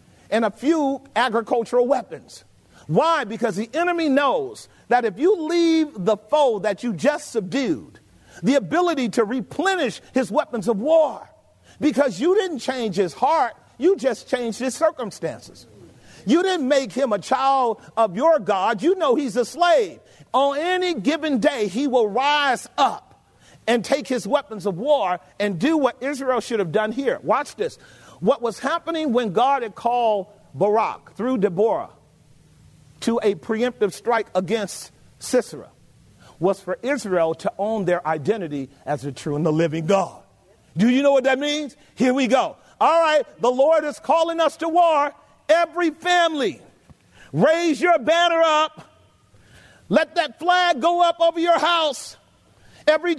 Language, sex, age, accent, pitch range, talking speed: English, male, 40-59, American, 220-320 Hz, 160 wpm